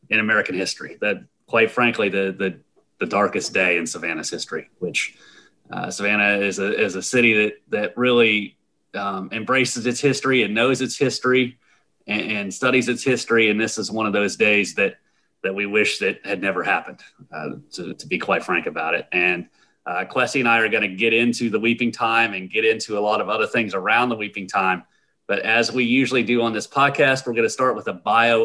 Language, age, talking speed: English, 30-49, 215 wpm